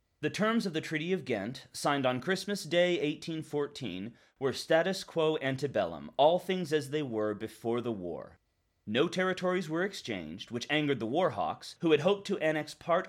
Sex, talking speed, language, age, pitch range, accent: male, 175 wpm, English, 30-49, 130-170 Hz, American